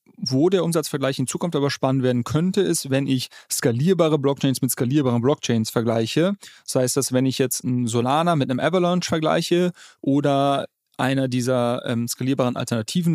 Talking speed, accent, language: 160 wpm, German, German